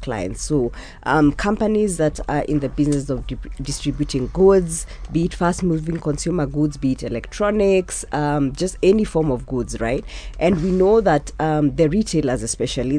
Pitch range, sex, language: 130-165 Hz, female, English